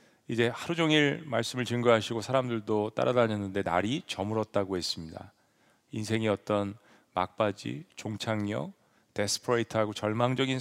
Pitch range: 105-130 Hz